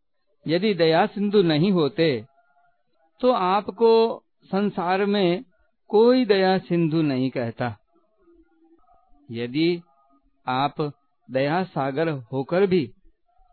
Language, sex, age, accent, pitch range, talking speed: Hindi, male, 50-69, native, 150-225 Hz, 90 wpm